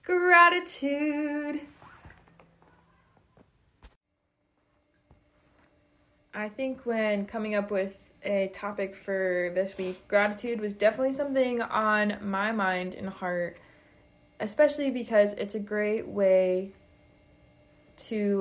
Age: 20-39